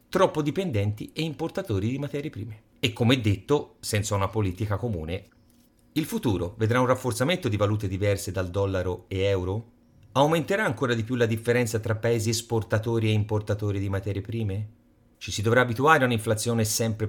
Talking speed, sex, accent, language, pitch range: 165 wpm, male, native, Italian, 100-125 Hz